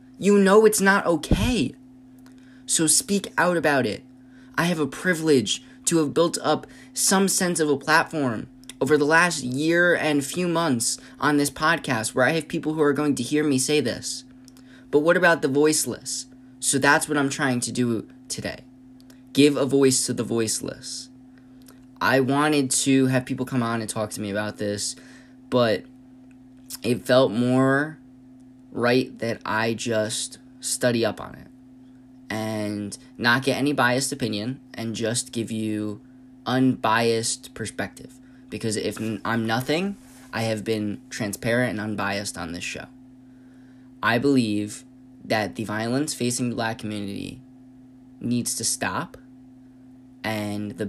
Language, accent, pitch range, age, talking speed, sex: English, American, 115-135 Hz, 20-39, 150 wpm, male